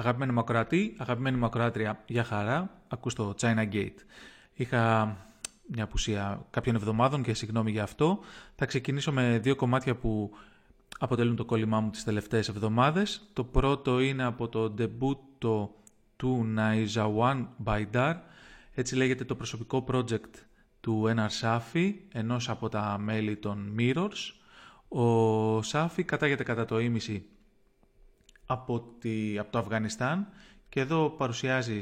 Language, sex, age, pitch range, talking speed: English, male, 30-49, 110-145 Hz, 130 wpm